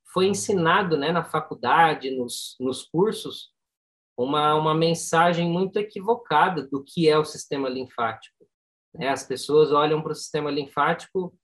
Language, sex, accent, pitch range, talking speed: Portuguese, male, Brazilian, 150-185 Hz, 140 wpm